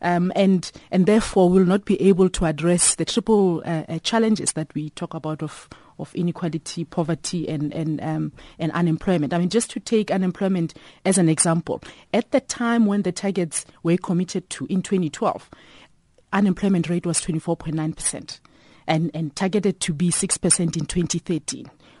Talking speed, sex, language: 160 wpm, female, English